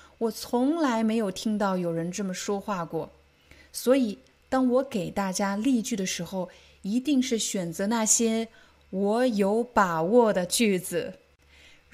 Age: 20-39